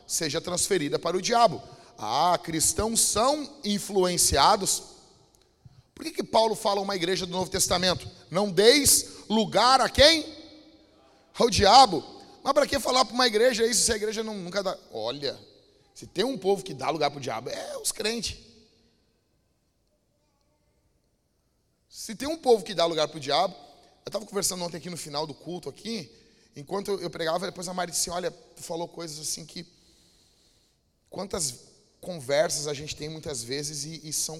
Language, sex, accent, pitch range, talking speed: Portuguese, male, Brazilian, 165-220 Hz, 170 wpm